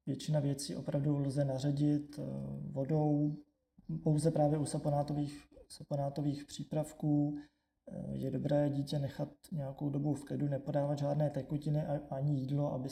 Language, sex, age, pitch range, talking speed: Czech, male, 20-39, 135-150 Hz, 120 wpm